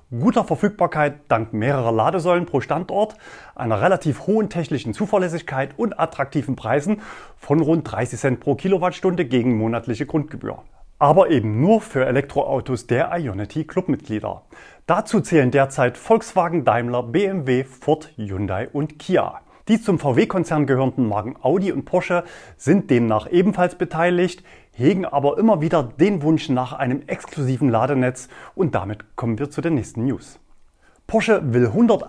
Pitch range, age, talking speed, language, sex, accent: 125-180 Hz, 30-49, 140 wpm, German, male, German